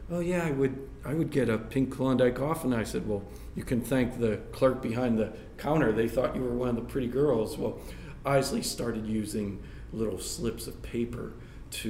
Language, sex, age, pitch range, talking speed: English, male, 40-59, 105-125 Hz, 205 wpm